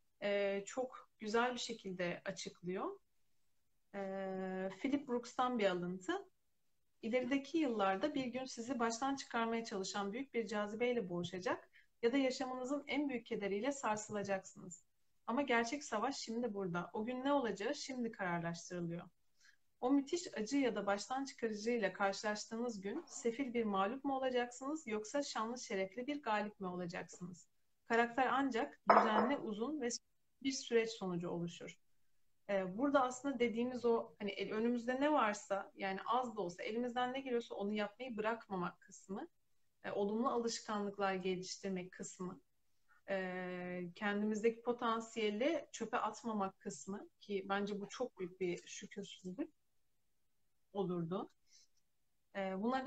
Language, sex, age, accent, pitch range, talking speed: Turkish, female, 40-59, native, 195-250 Hz, 120 wpm